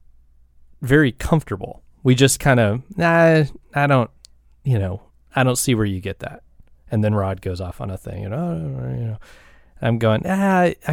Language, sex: English, male